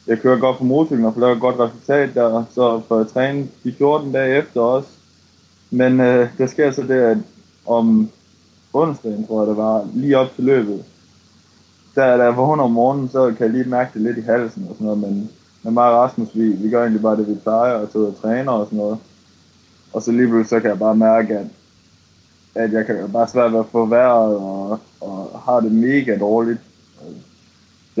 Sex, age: male, 20-39